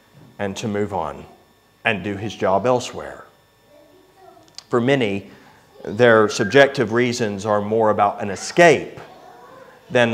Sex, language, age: male, English, 30-49